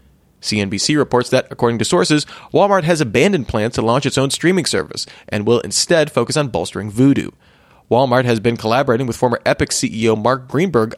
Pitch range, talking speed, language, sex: 115-150 Hz, 180 wpm, English, male